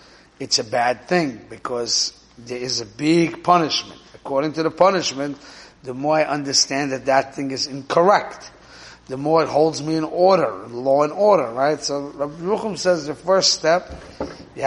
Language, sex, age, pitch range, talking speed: English, male, 30-49, 135-175 Hz, 175 wpm